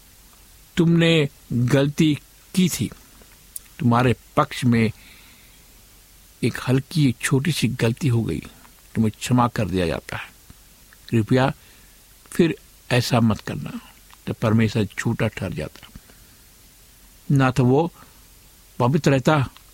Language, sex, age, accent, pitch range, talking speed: Hindi, male, 60-79, native, 110-135 Hz, 105 wpm